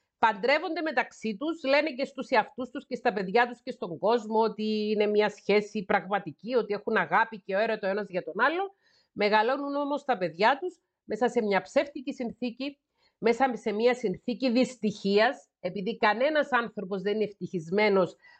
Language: Greek